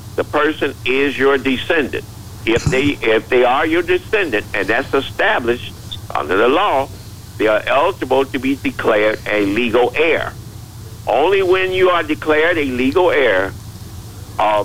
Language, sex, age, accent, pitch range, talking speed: English, male, 60-79, American, 105-135 Hz, 150 wpm